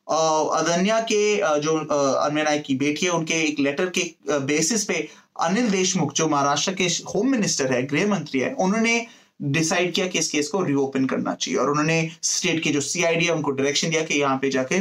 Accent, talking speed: native, 180 wpm